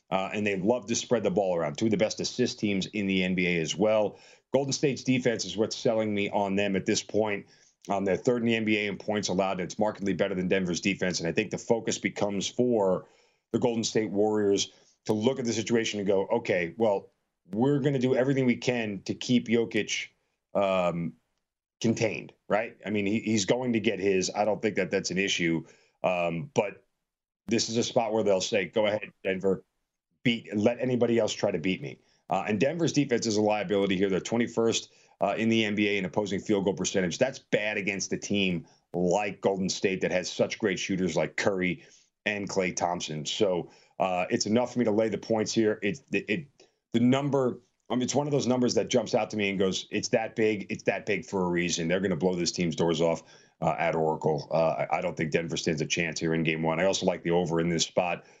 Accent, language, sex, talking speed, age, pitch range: American, English, male, 230 wpm, 40-59, 90-115 Hz